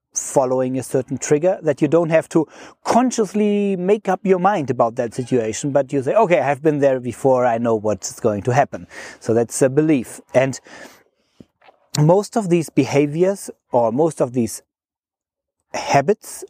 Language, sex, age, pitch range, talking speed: English, male, 40-59, 130-180 Hz, 165 wpm